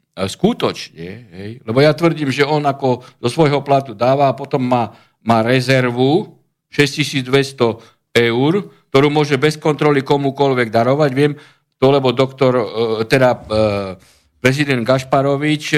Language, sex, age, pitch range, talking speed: Slovak, male, 50-69, 120-150 Hz, 120 wpm